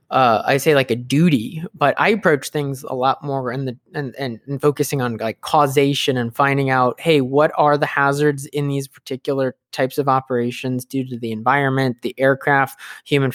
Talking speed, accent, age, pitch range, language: 185 wpm, American, 20-39, 130-150 Hz, English